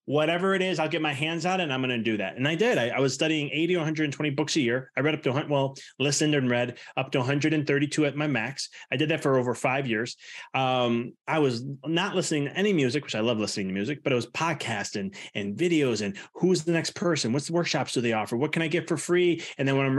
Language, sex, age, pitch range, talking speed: English, male, 30-49, 115-150 Hz, 275 wpm